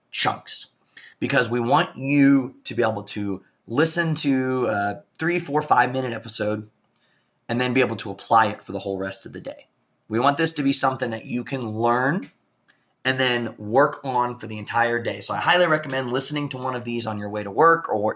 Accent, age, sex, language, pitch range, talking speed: American, 30-49, male, English, 110-145 Hz, 210 wpm